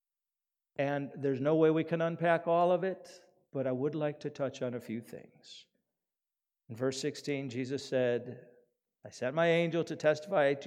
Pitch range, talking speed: 125-150 Hz, 180 wpm